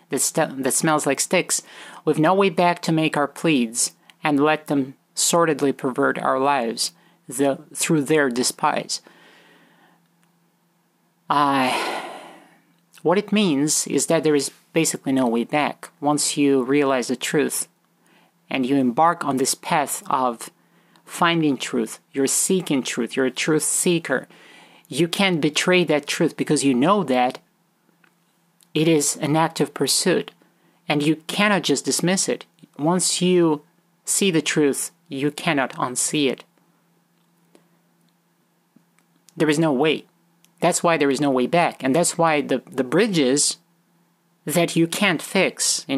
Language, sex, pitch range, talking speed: English, male, 140-170 Hz, 140 wpm